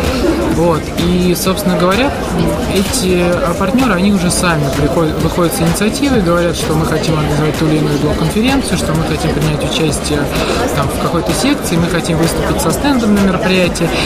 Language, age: Russian, 20-39